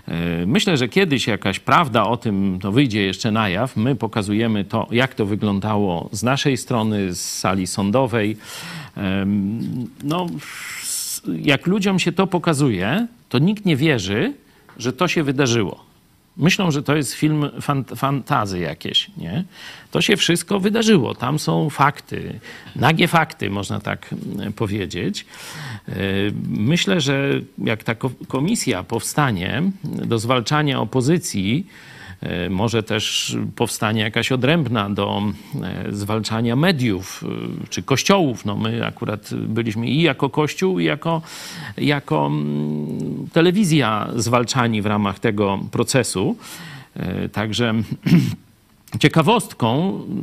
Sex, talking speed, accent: male, 115 wpm, native